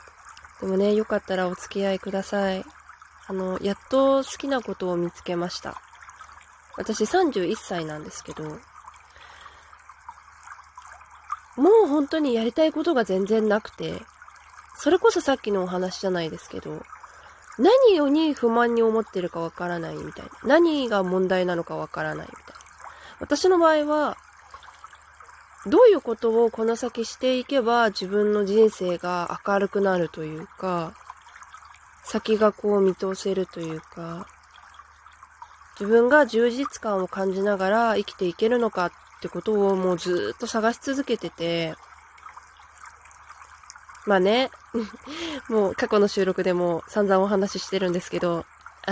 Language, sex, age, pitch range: Japanese, female, 20-39, 185-240 Hz